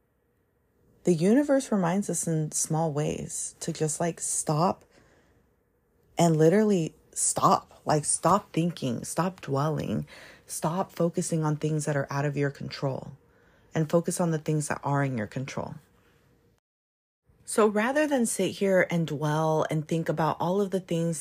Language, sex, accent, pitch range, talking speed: English, female, American, 140-170 Hz, 150 wpm